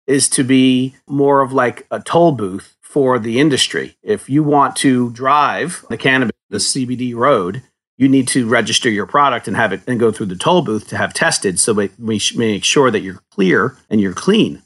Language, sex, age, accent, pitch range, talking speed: English, male, 40-59, American, 115-140 Hz, 210 wpm